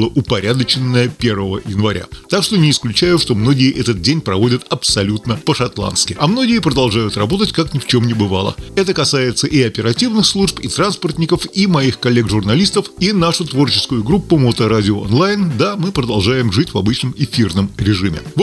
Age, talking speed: 30-49, 160 wpm